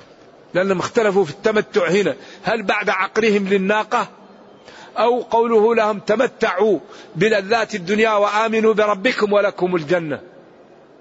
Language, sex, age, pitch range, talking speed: Arabic, male, 50-69, 175-215 Hz, 105 wpm